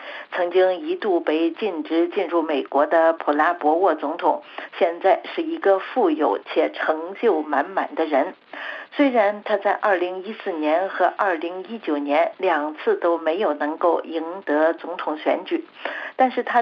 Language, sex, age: Chinese, female, 50-69